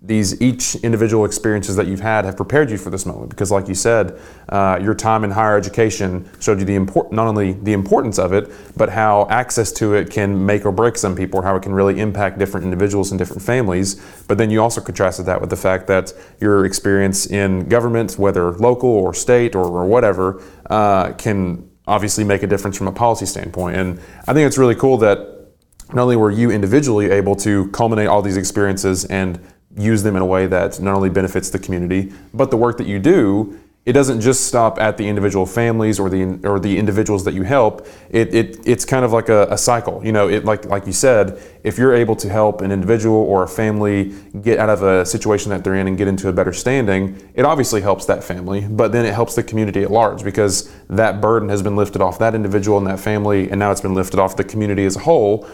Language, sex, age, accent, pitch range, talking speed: English, male, 30-49, American, 95-110 Hz, 230 wpm